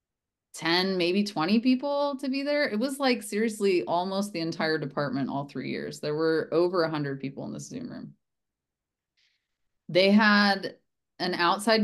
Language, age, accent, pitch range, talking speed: English, 20-39, American, 145-200 Hz, 155 wpm